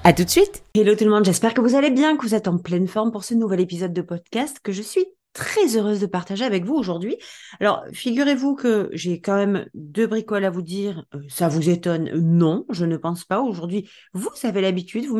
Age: 30-49